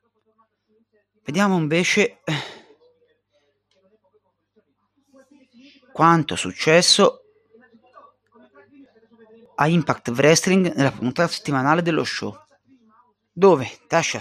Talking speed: 65 wpm